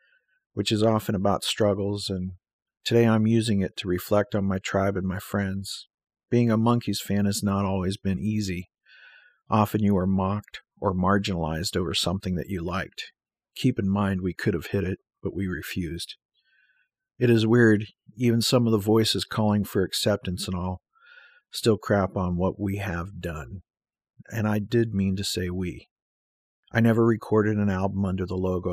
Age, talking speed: 50-69, 175 wpm